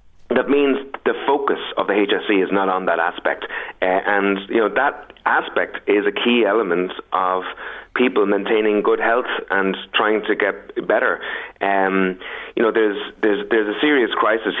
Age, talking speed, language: 30-49, 170 wpm, English